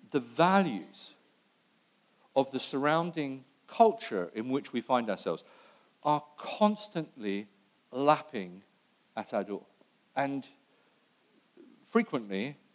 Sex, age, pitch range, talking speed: male, 50-69, 100-145 Hz, 90 wpm